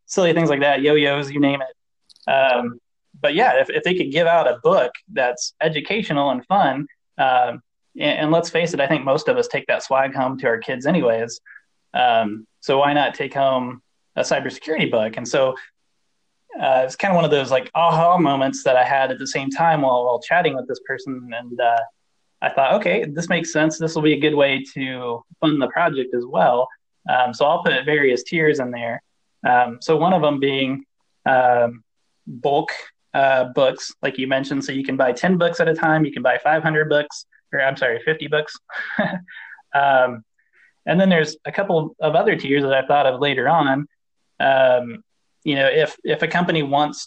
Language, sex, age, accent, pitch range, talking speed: English, male, 20-39, American, 130-155 Hz, 205 wpm